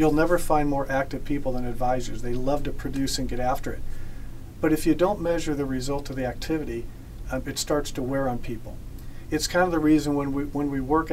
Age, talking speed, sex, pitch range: 40-59, 230 wpm, male, 125-150 Hz